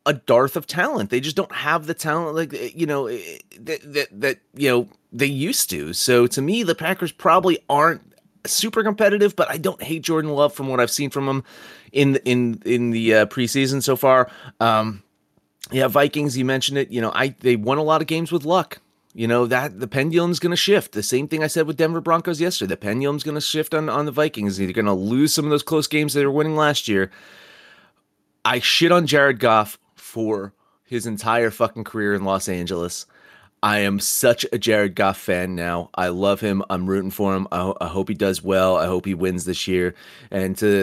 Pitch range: 100-155 Hz